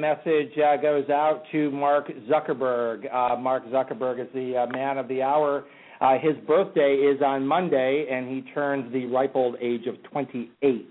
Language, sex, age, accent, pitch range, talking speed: English, male, 50-69, American, 120-140 Hz, 175 wpm